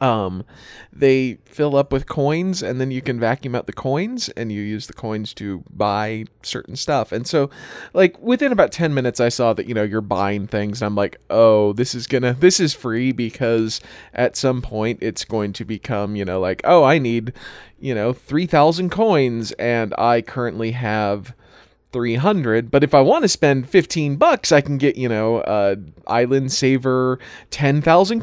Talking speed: 190 wpm